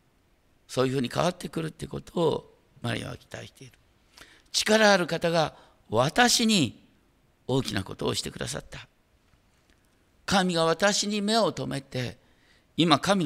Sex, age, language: male, 50-69, Japanese